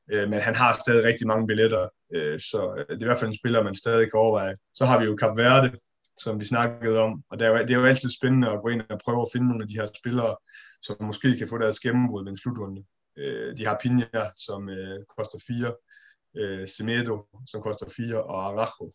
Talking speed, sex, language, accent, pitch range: 215 wpm, male, Danish, native, 105-125 Hz